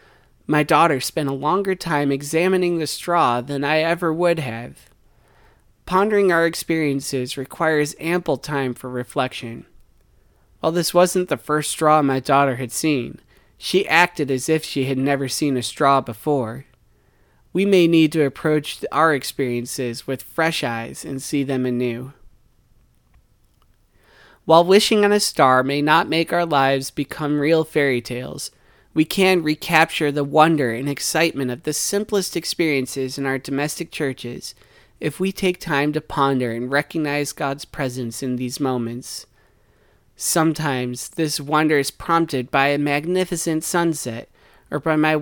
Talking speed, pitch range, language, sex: 145 wpm, 130-160 Hz, English, male